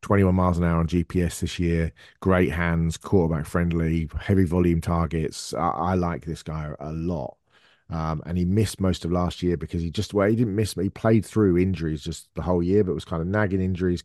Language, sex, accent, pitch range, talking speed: English, male, British, 80-95 Hz, 225 wpm